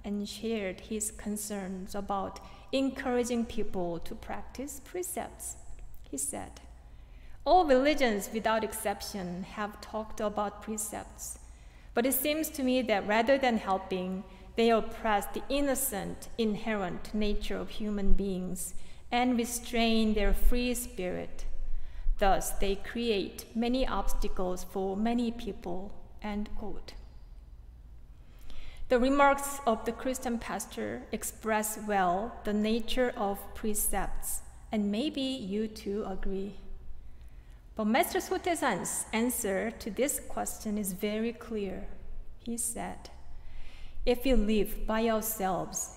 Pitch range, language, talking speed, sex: 190-235 Hz, English, 115 wpm, female